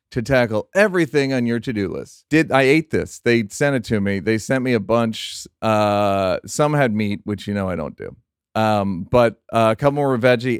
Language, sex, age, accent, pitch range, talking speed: English, male, 40-59, American, 105-150 Hz, 220 wpm